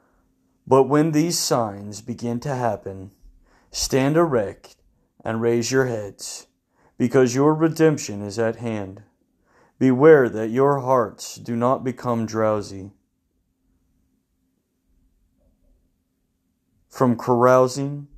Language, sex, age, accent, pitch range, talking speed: English, male, 30-49, American, 95-130 Hz, 95 wpm